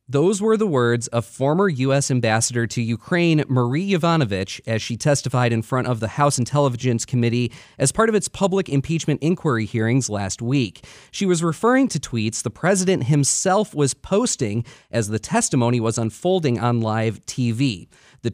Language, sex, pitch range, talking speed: English, male, 120-175 Hz, 165 wpm